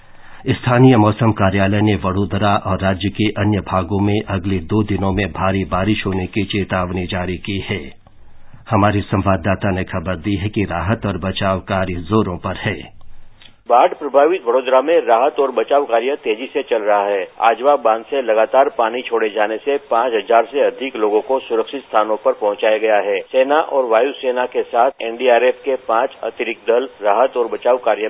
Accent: native